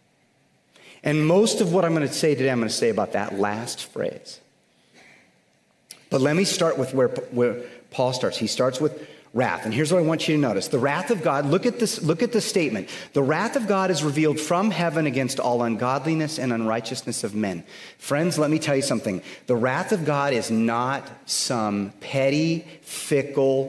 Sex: male